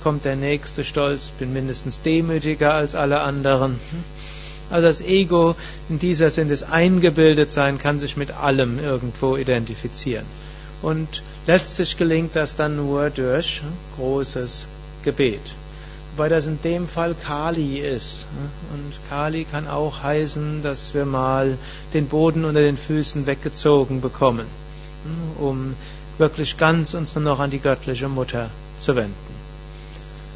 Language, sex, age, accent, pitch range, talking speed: German, male, 60-79, German, 140-160 Hz, 135 wpm